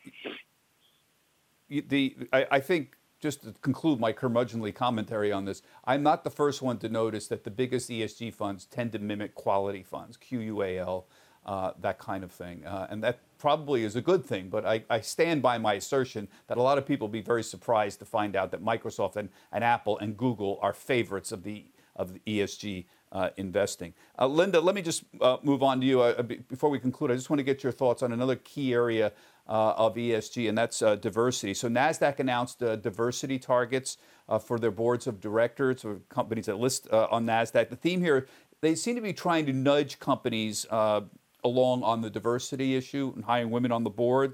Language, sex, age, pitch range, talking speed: English, male, 50-69, 110-135 Hz, 205 wpm